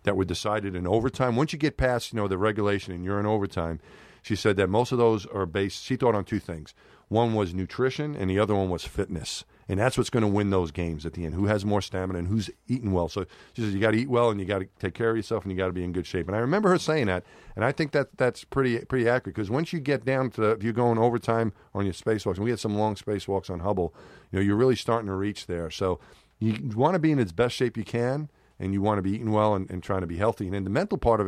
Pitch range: 95-120 Hz